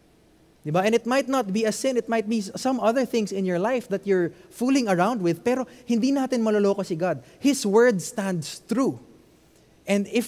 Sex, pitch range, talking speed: male, 160-230 Hz, 200 wpm